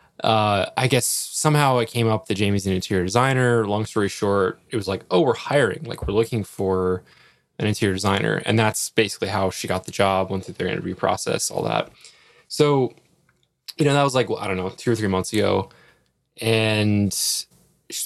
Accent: American